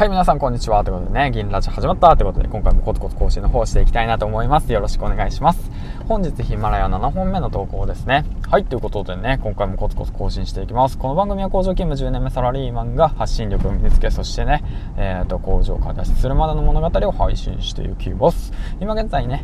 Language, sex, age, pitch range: Japanese, male, 20-39, 95-130 Hz